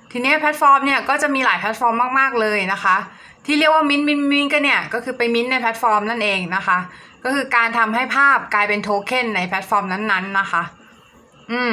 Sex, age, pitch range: female, 20-39, 200-260 Hz